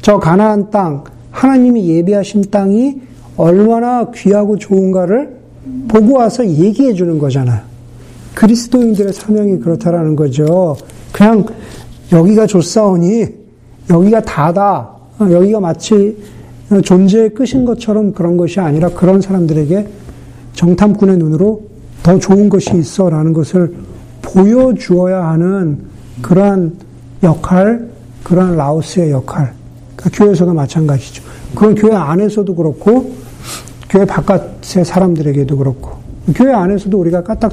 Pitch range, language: 155-205 Hz, Korean